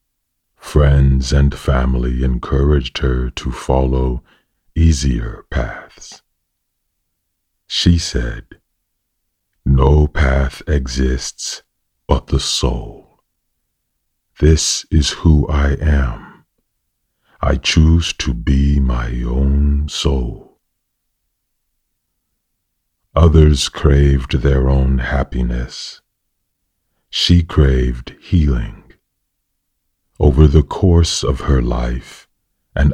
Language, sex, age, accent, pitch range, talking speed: English, male, 40-59, American, 65-80 Hz, 80 wpm